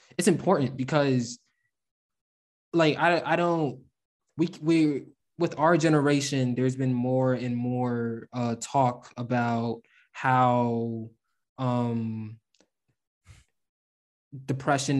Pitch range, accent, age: 115-130 Hz, American, 20-39